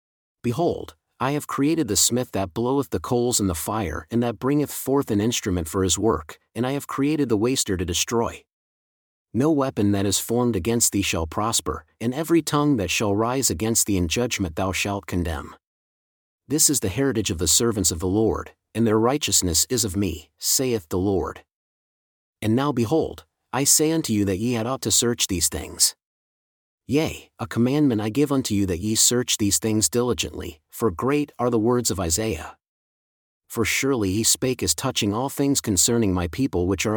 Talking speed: 195 wpm